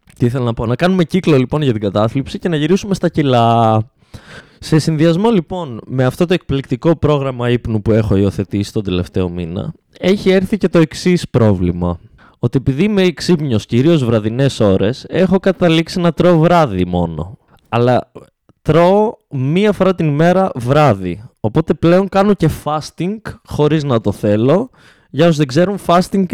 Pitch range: 120-175 Hz